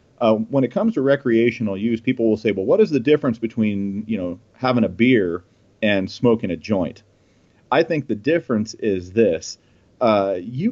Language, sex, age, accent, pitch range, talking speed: English, male, 40-59, American, 110-135 Hz, 185 wpm